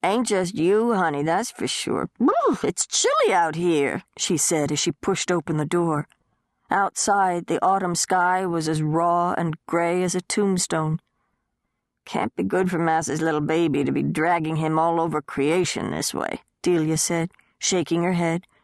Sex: female